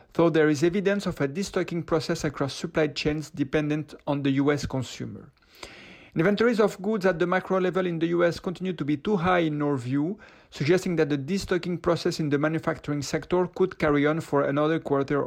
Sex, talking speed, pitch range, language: male, 195 wpm, 150-190 Hz, French